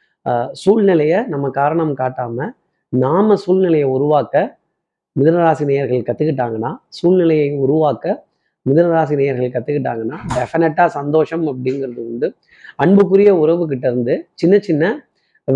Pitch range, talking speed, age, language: 135-170 Hz, 80 wpm, 30-49, Tamil